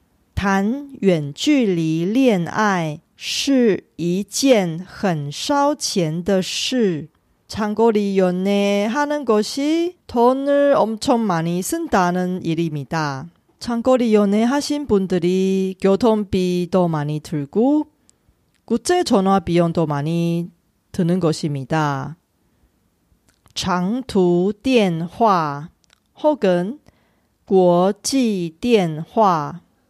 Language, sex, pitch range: Korean, female, 170-245 Hz